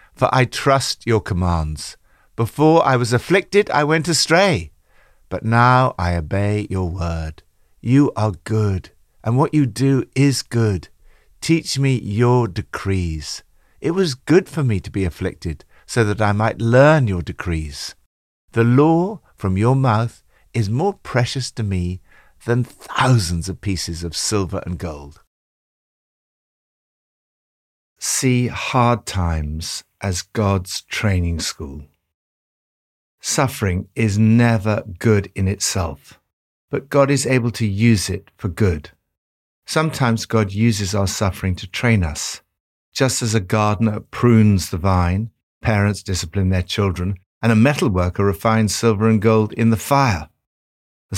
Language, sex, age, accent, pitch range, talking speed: English, male, 60-79, British, 90-120 Hz, 135 wpm